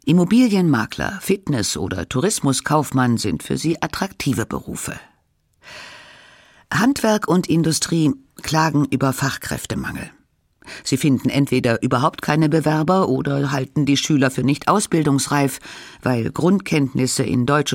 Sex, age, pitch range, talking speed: female, 50-69, 130-175 Hz, 110 wpm